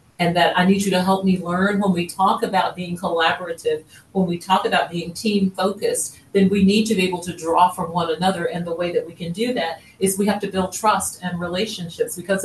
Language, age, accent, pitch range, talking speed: English, 50-69, American, 160-190 Hz, 240 wpm